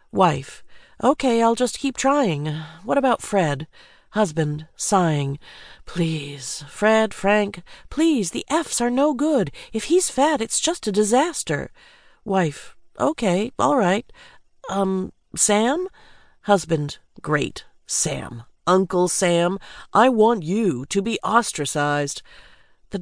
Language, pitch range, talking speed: English, 165-260 Hz, 115 wpm